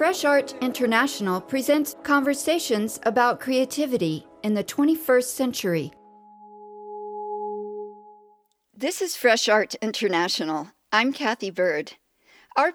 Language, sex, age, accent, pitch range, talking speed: English, female, 50-69, American, 195-275 Hz, 95 wpm